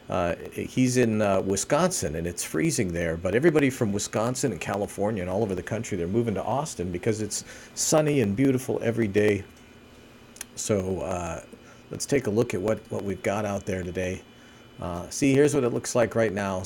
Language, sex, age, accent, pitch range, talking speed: English, male, 50-69, American, 95-120 Hz, 195 wpm